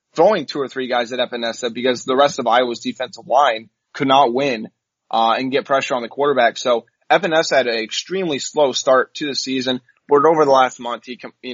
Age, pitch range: 20-39, 115-140 Hz